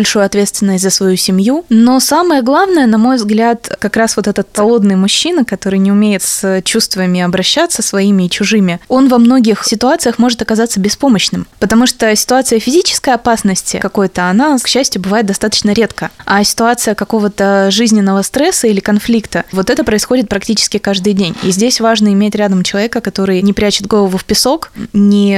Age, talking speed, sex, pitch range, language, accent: 20-39, 170 wpm, female, 200-235 Hz, Russian, native